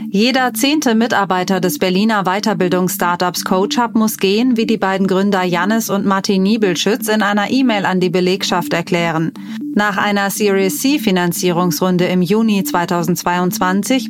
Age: 30-49